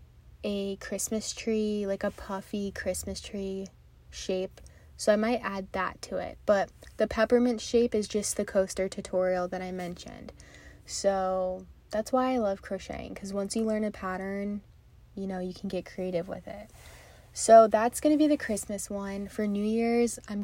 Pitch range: 195-215 Hz